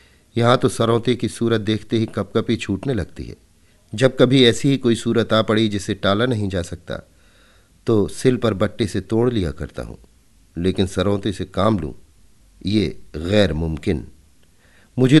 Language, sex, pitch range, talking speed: Hindi, male, 85-115 Hz, 170 wpm